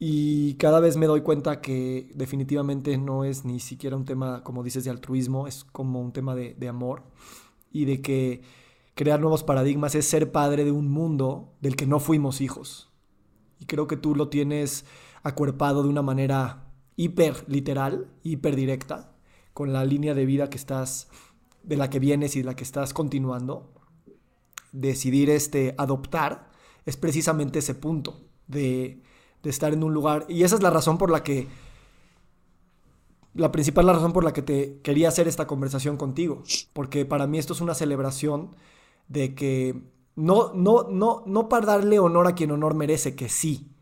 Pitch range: 135-155 Hz